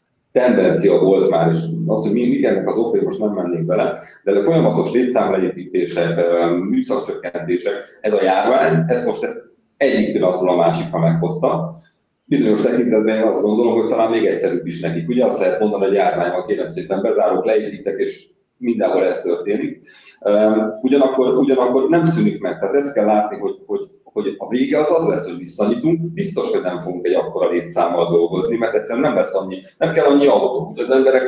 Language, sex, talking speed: Hungarian, male, 180 wpm